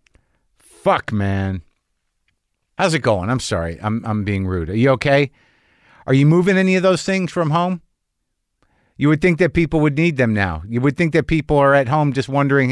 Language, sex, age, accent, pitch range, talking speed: English, male, 50-69, American, 105-150 Hz, 200 wpm